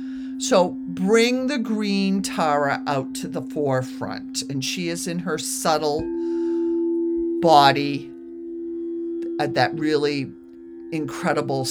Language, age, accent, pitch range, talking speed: English, 50-69, American, 130-185 Hz, 100 wpm